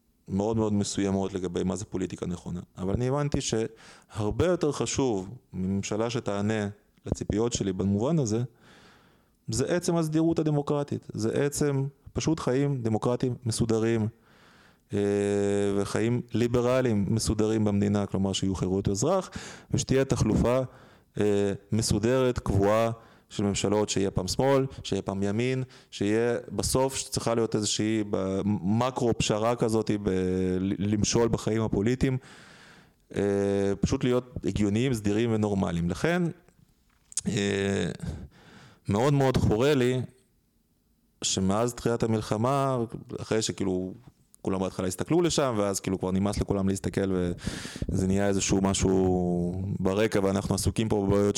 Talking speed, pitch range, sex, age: 115 wpm, 100-125 Hz, male, 20-39